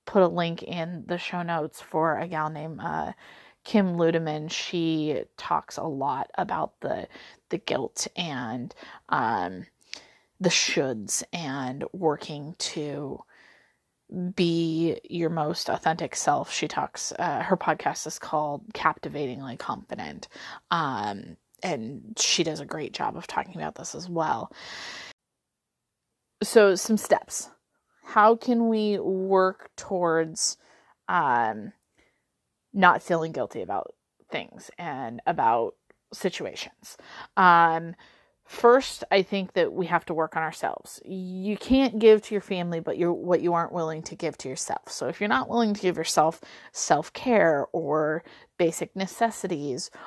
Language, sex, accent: English, female, American